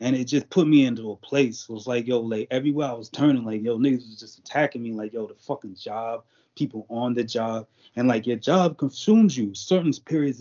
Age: 20-39